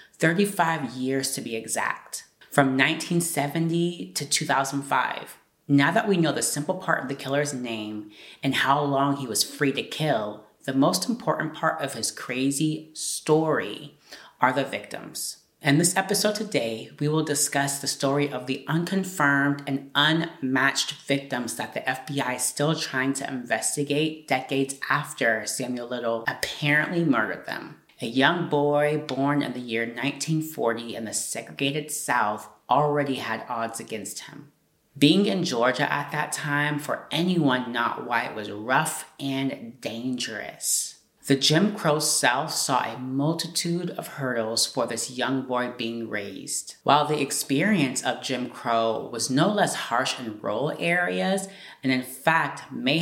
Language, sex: English, female